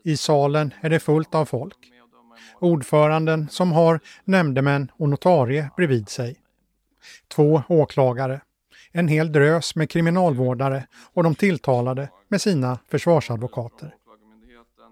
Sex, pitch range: male, 130-170 Hz